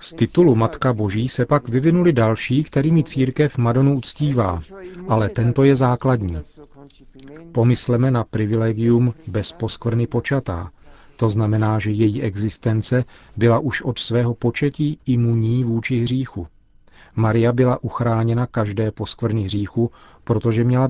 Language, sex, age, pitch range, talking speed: Czech, male, 40-59, 105-125 Hz, 125 wpm